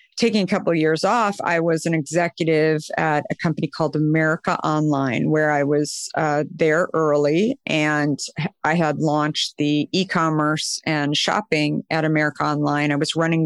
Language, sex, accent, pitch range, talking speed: English, female, American, 155-185 Hz, 160 wpm